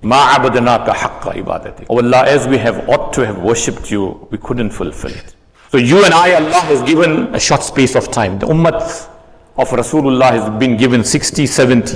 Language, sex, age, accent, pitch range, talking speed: English, male, 60-79, Indian, 115-150 Hz, 185 wpm